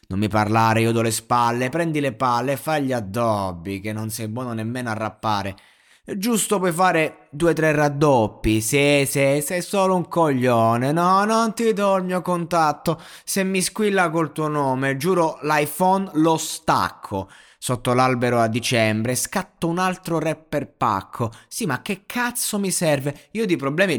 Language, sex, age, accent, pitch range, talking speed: Italian, male, 20-39, native, 120-165 Hz, 175 wpm